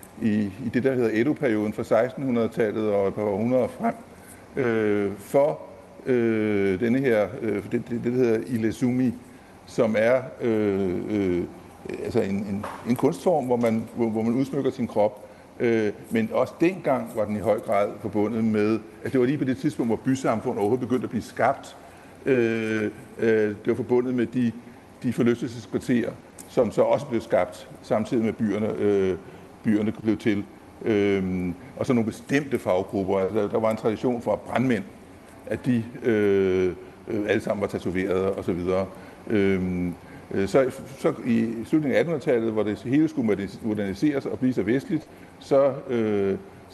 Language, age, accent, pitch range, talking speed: Danish, 60-79, native, 100-120 Hz, 165 wpm